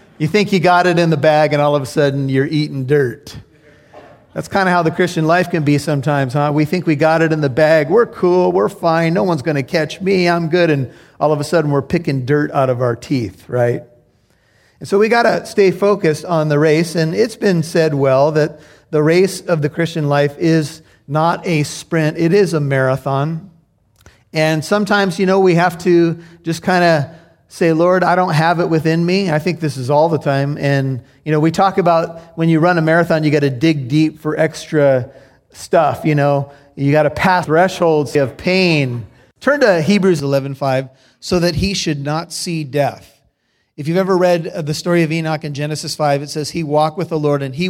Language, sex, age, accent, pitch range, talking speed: English, male, 40-59, American, 145-175 Hz, 220 wpm